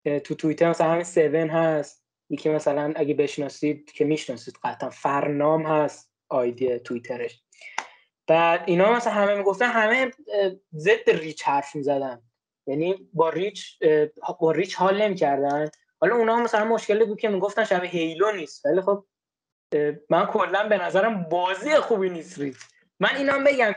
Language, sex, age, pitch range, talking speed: Persian, male, 20-39, 155-200 Hz, 145 wpm